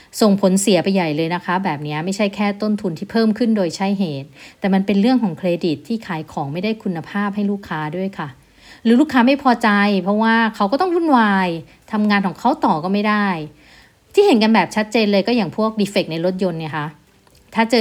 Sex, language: female, Thai